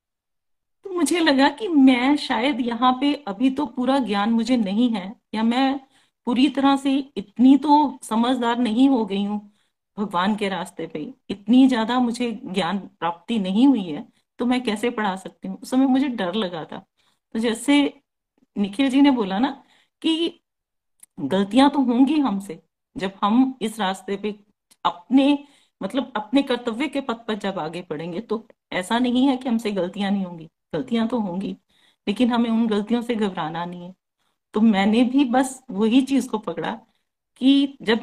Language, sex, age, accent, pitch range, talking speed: Hindi, female, 40-59, native, 195-255 Hz, 170 wpm